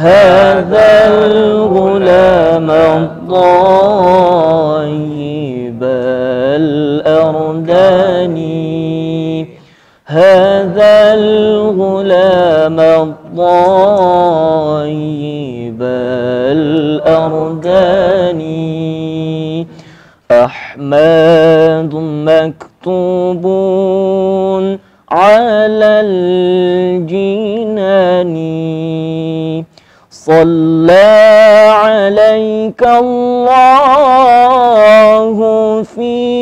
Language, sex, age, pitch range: Indonesian, male, 40-59, 160-215 Hz